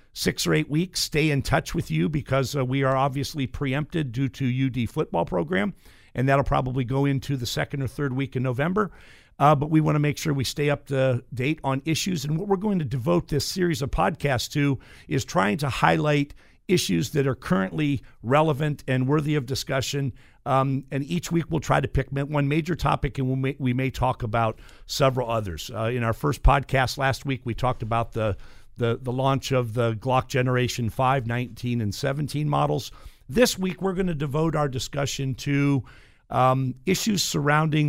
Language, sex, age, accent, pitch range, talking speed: English, male, 50-69, American, 125-150 Hz, 195 wpm